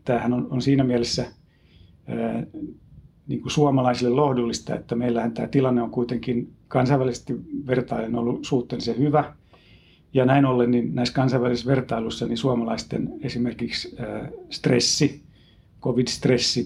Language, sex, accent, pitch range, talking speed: Finnish, male, native, 115-130 Hz, 110 wpm